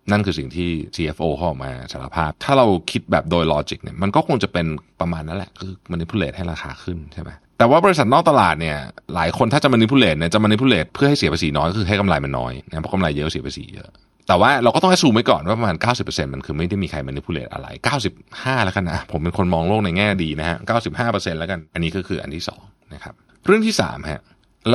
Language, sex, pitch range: Thai, male, 85-130 Hz